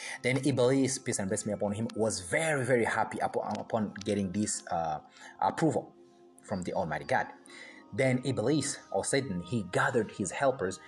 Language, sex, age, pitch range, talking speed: English, male, 30-49, 100-130 Hz, 165 wpm